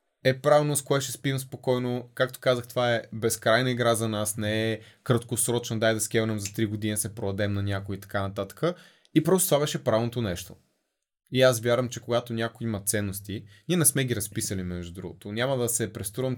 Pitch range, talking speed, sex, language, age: 110-130 Hz, 200 wpm, male, Bulgarian, 20-39